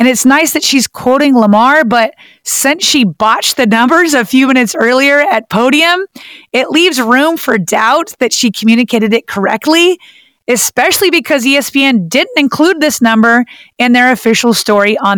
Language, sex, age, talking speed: English, female, 30-49, 160 wpm